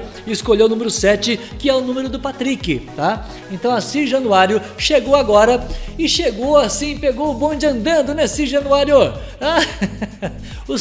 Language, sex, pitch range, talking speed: Portuguese, male, 200-275 Hz, 155 wpm